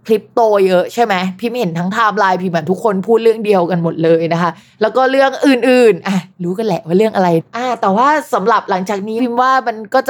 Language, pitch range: Thai, 180-245 Hz